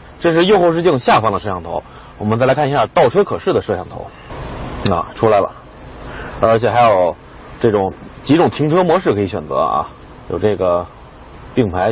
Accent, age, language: native, 30-49, Chinese